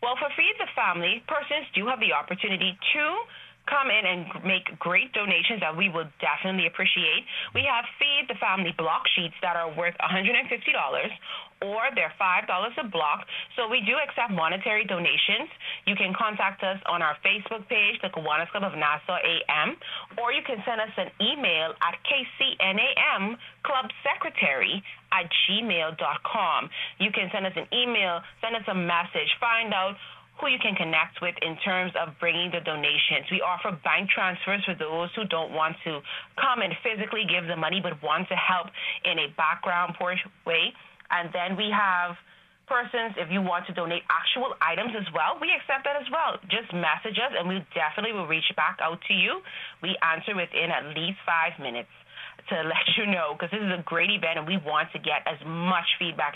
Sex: female